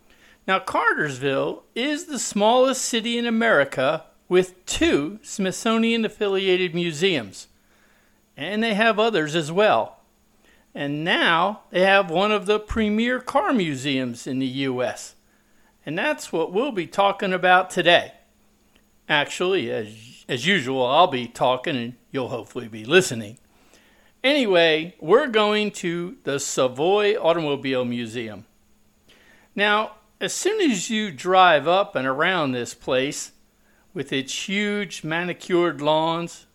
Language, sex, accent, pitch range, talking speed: English, male, American, 145-205 Hz, 125 wpm